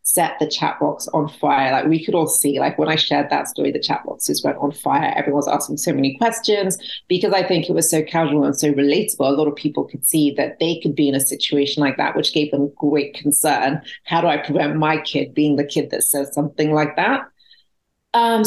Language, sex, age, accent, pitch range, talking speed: English, female, 30-49, British, 145-165 Hz, 235 wpm